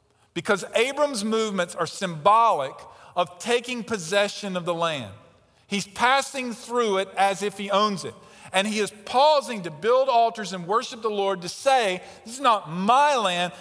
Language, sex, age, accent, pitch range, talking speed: English, male, 50-69, American, 195-255 Hz, 170 wpm